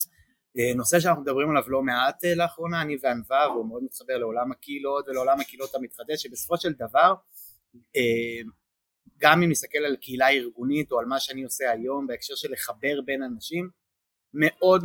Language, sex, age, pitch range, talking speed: Hebrew, male, 30-49, 125-155 Hz, 165 wpm